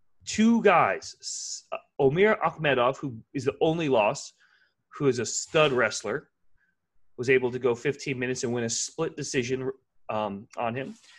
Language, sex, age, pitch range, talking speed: English, male, 30-49, 115-160 Hz, 150 wpm